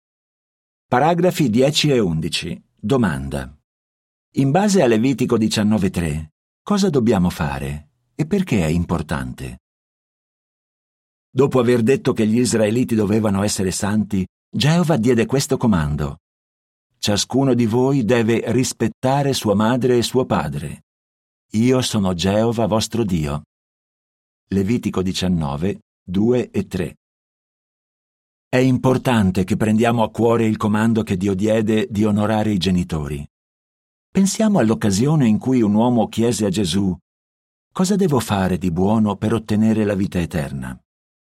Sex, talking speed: male, 120 wpm